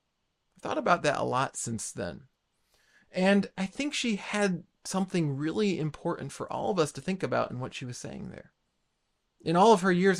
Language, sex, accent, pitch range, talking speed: English, male, American, 130-190 Hz, 195 wpm